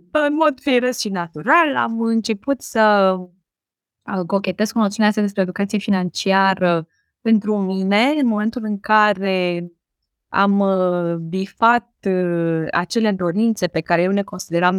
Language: Romanian